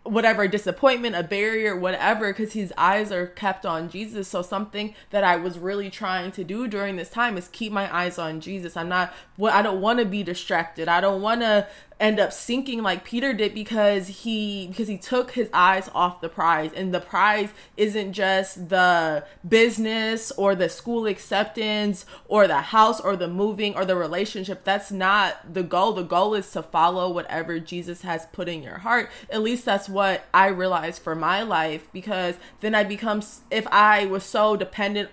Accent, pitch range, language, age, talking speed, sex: American, 175-215 Hz, English, 20-39, 195 wpm, female